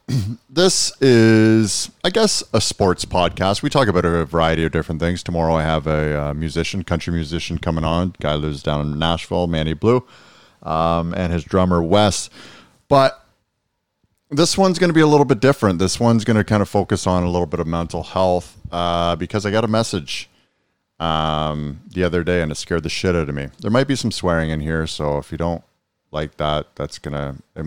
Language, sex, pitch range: English, male, 80-105 Hz